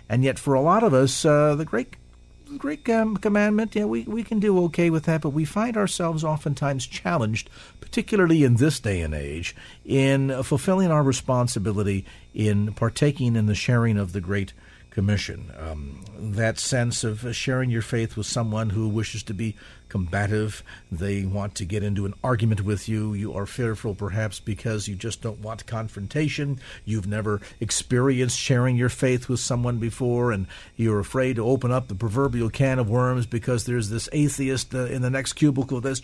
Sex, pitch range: male, 105-140 Hz